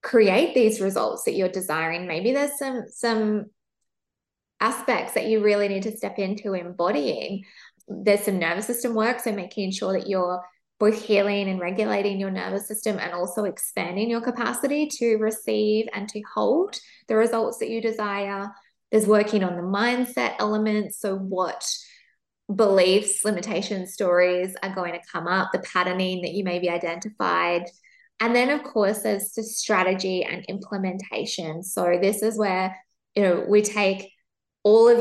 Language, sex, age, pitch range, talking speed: English, female, 20-39, 185-220 Hz, 160 wpm